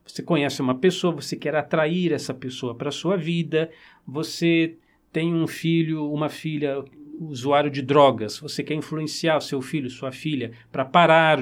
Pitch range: 130-175 Hz